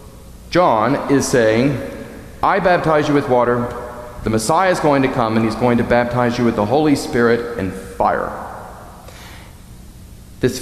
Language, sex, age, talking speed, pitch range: English, male, 40-59, 155 wpm, 110-140 Hz